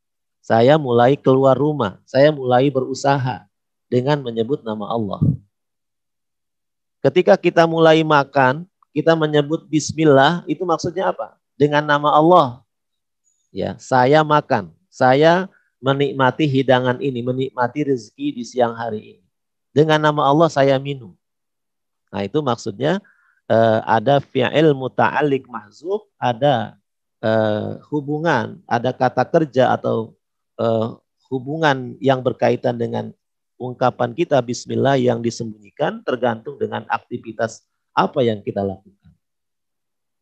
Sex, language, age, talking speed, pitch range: male, Indonesian, 40-59, 110 wpm, 120-160 Hz